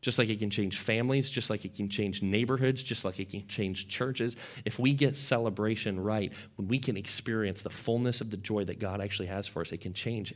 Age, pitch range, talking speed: 30-49, 105-130 Hz, 235 wpm